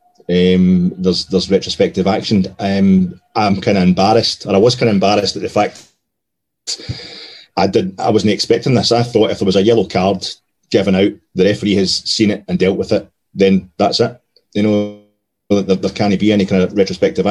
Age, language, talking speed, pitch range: 30-49, English, 200 wpm, 95-115 Hz